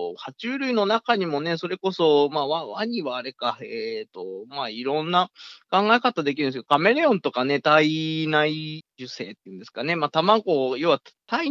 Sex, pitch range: male, 150-235 Hz